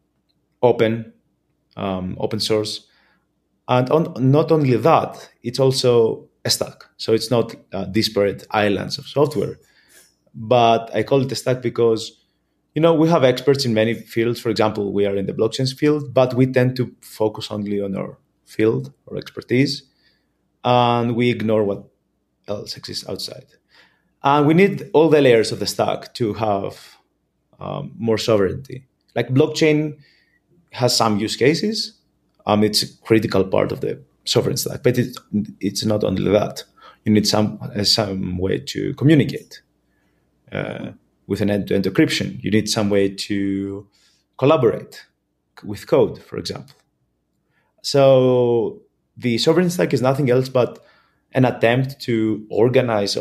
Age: 30-49